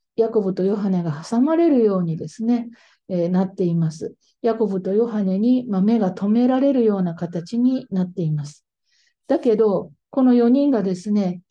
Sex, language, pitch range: female, Japanese, 190-255 Hz